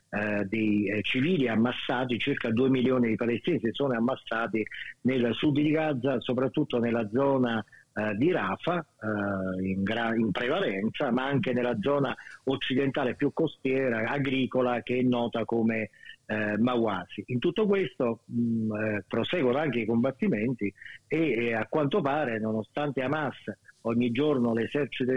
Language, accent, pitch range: Italian, native, 115-145 Hz